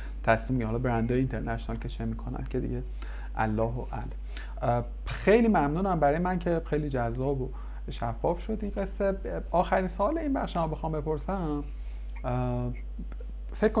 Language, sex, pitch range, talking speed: Persian, male, 115-140 Hz, 140 wpm